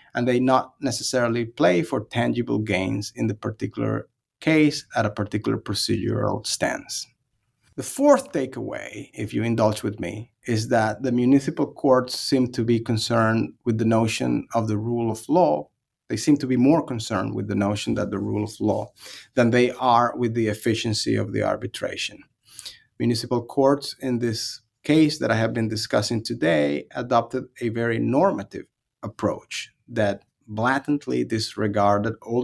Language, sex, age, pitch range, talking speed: English, male, 30-49, 105-125 Hz, 155 wpm